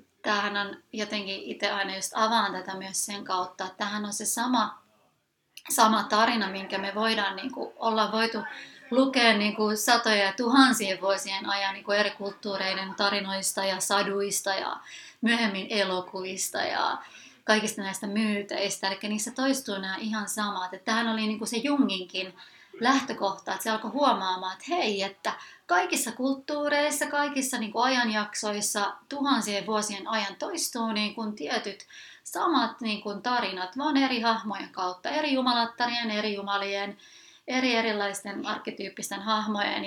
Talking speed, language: 140 wpm, Finnish